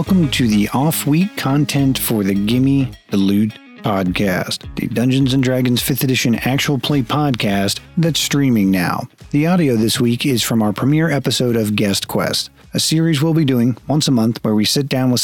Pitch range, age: 110-140 Hz, 40-59